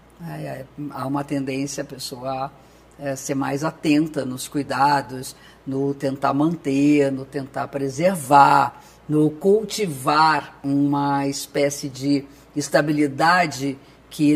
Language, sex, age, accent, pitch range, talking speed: Portuguese, female, 50-69, Brazilian, 140-185 Hz, 110 wpm